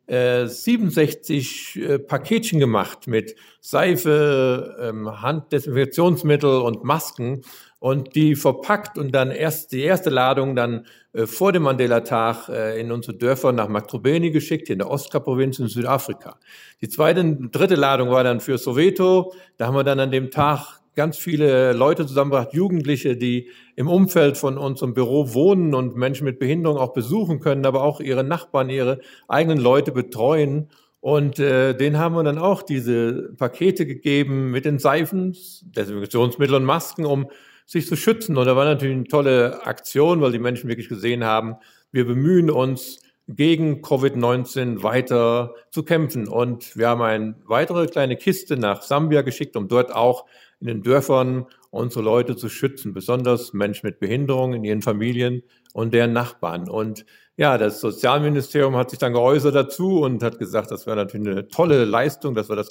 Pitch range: 120-150 Hz